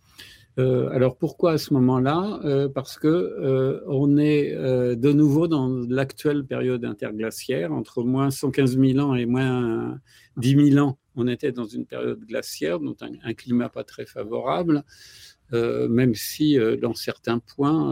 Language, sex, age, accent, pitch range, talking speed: French, male, 50-69, French, 120-145 Hz, 165 wpm